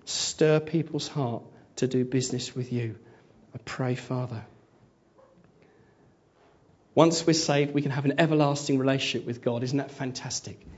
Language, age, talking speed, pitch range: English, 40-59, 140 wpm, 125-155 Hz